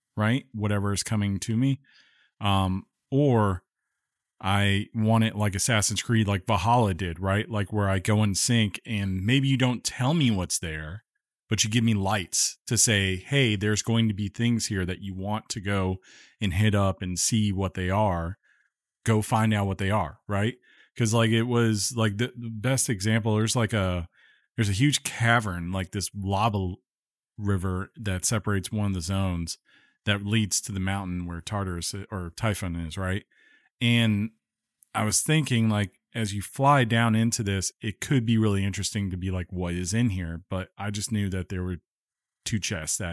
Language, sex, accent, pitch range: English, male, American, 95-115 Hz